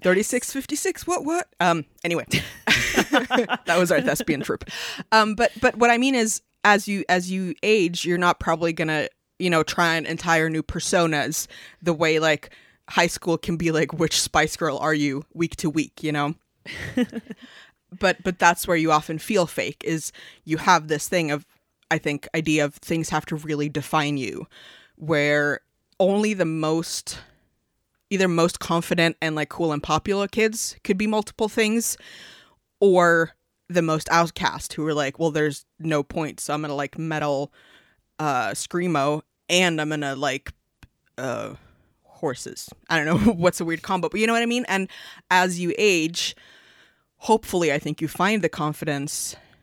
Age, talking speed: 20-39, 175 wpm